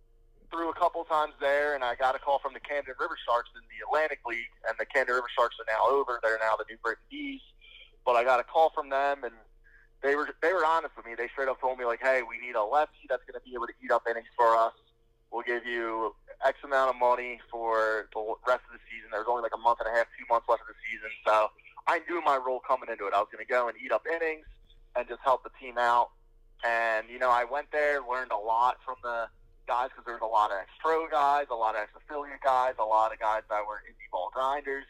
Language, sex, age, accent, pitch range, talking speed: English, male, 20-39, American, 115-140 Hz, 265 wpm